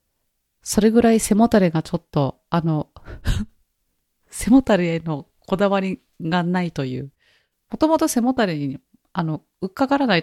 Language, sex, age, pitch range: Japanese, female, 30-49, 160-215 Hz